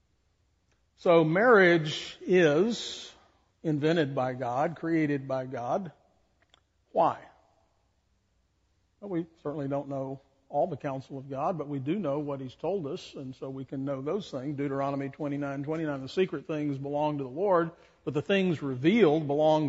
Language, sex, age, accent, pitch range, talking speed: English, male, 50-69, American, 135-175 Hz, 150 wpm